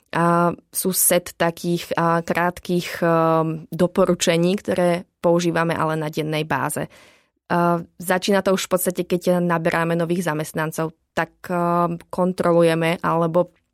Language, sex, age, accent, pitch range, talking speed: Czech, female, 20-39, native, 165-180 Hz, 105 wpm